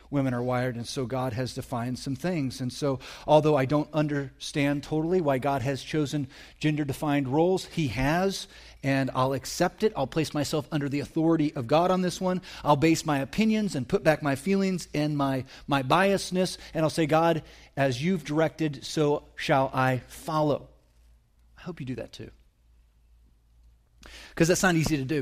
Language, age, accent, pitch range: English, 30-49, American, 135-175 Hz